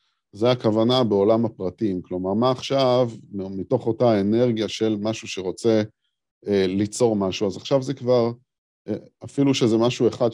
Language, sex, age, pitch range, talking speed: Hebrew, male, 50-69, 95-120 Hz, 145 wpm